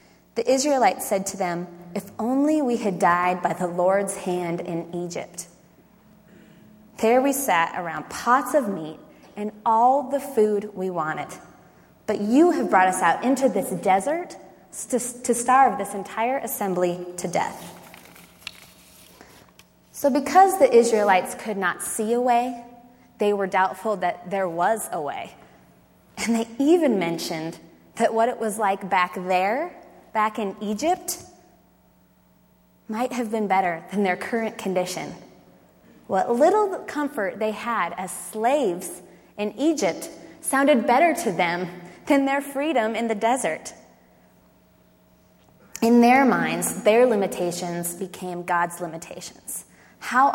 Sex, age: female, 20-39